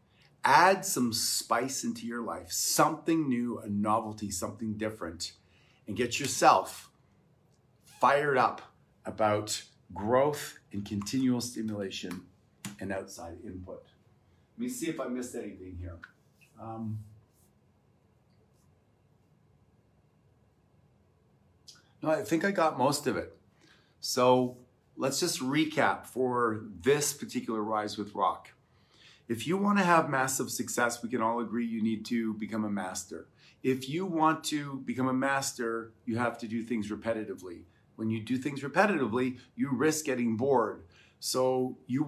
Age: 40-59